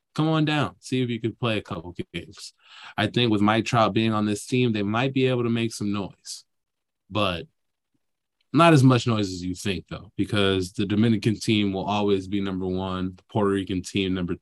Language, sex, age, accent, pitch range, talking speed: English, male, 20-39, American, 100-130 Hz, 210 wpm